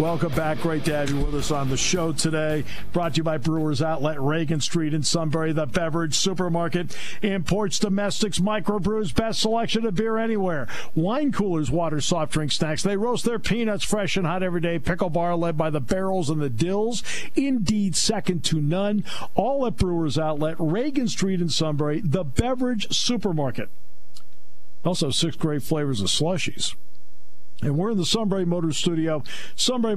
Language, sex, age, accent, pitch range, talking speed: English, male, 50-69, American, 120-185 Hz, 170 wpm